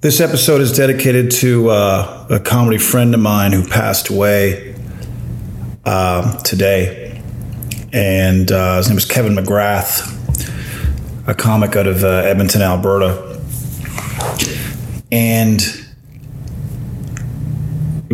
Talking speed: 105 wpm